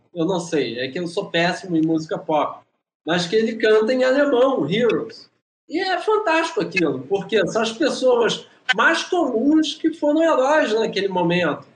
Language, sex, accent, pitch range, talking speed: Portuguese, male, Brazilian, 190-275 Hz, 170 wpm